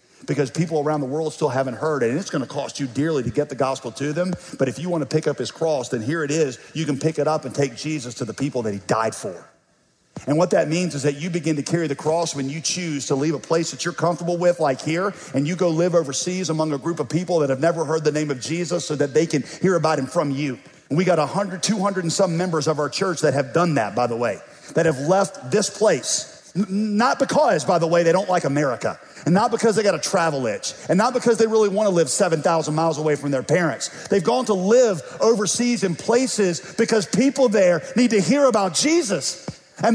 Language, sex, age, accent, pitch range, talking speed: English, male, 50-69, American, 150-225 Hz, 260 wpm